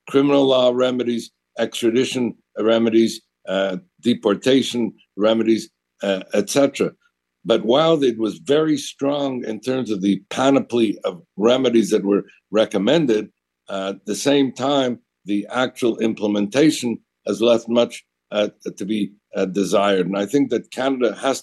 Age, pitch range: 60-79, 105-130 Hz